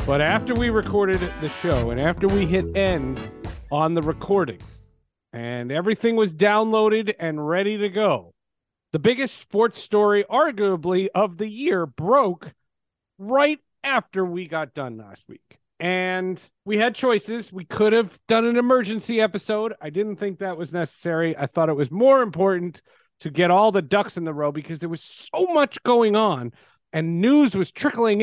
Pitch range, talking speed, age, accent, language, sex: 155-215 Hz, 170 wpm, 40-59, American, English, male